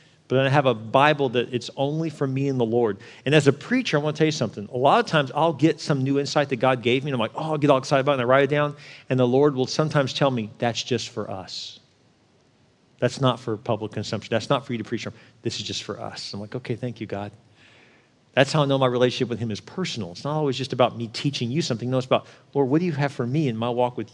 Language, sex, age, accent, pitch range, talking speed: English, male, 40-59, American, 125-155 Hz, 295 wpm